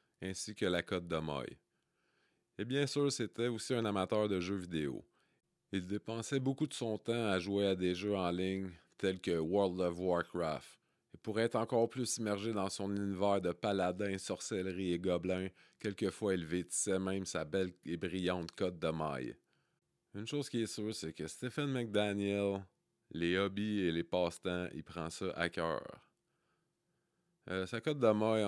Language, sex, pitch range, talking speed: French, male, 90-105 Hz, 175 wpm